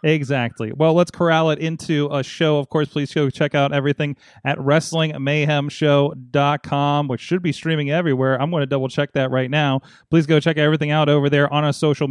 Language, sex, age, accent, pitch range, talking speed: English, male, 30-49, American, 135-160 Hz, 200 wpm